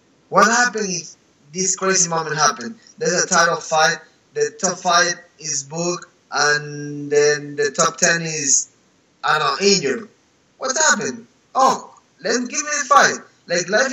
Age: 20-39